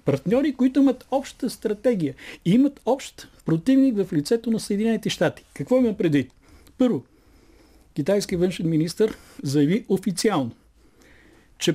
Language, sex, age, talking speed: Bulgarian, male, 50-69, 125 wpm